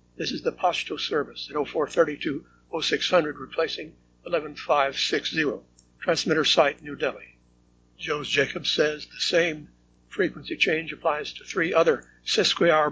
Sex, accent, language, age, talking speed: male, American, English, 60-79, 115 wpm